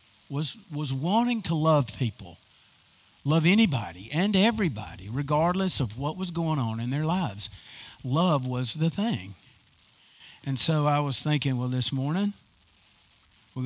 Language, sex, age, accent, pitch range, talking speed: English, male, 50-69, American, 115-165 Hz, 140 wpm